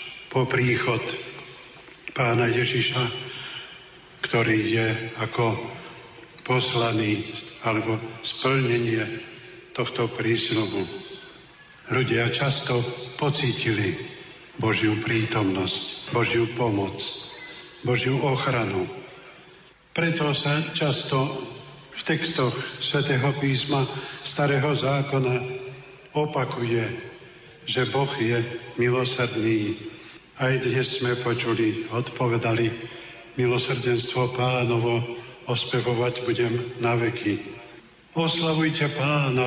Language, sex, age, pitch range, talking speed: Slovak, male, 50-69, 115-130 Hz, 75 wpm